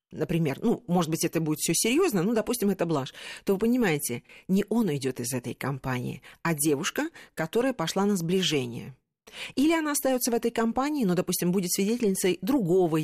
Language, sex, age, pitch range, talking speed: Russian, female, 40-59, 160-225 Hz, 175 wpm